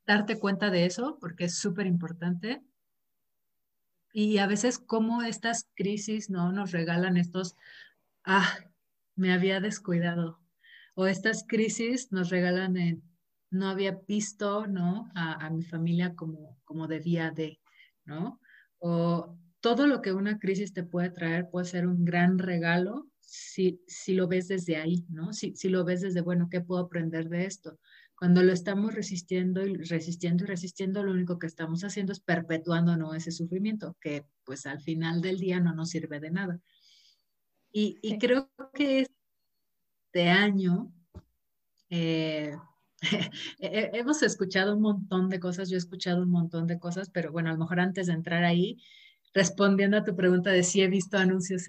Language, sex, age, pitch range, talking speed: Spanish, female, 30-49, 170-200 Hz, 165 wpm